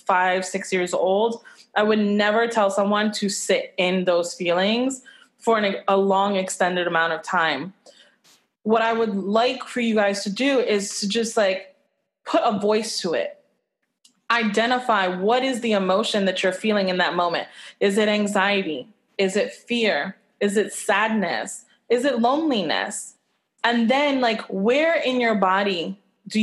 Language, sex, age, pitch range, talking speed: English, female, 20-39, 195-235 Hz, 160 wpm